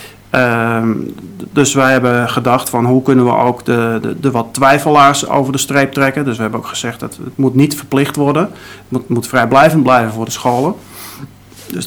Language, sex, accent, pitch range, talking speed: Dutch, male, Dutch, 115-140 Hz, 195 wpm